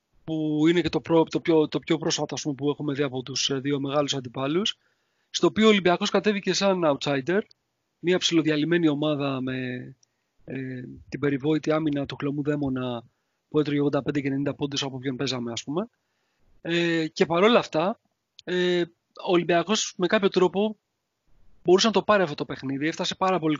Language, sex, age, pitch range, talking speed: Greek, male, 30-49, 145-180 Hz, 175 wpm